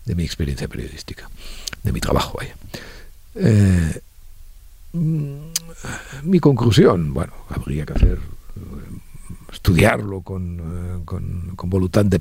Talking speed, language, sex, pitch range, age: 105 wpm, Spanish, male, 80-95 Hz, 50-69